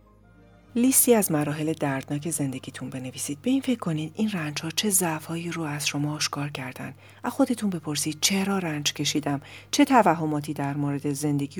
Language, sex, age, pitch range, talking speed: Persian, female, 40-59, 140-165 Hz, 160 wpm